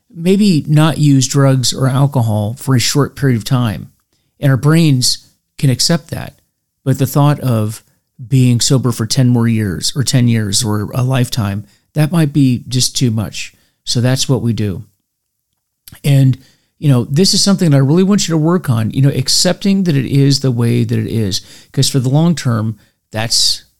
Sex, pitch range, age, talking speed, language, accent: male, 115-150 Hz, 40-59, 190 wpm, English, American